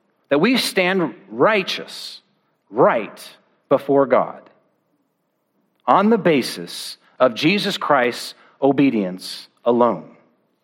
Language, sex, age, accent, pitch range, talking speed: English, male, 50-69, American, 140-190 Hz, 85 wpm